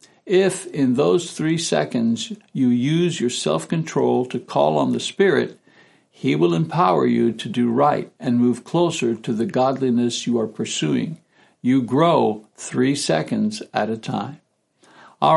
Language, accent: English, American